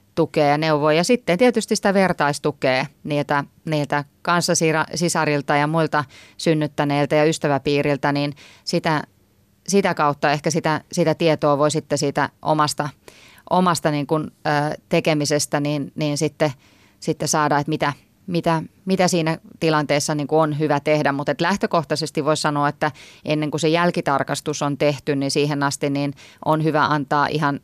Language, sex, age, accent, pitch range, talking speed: Finnish, female, 30-49, native, 145-160 Hz, 150 wpm